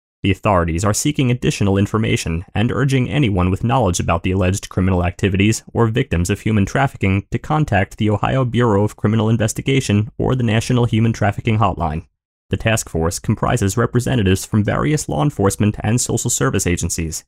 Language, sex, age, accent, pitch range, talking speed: English, male, 30-49, American, 95-125 Hz, 165 wpm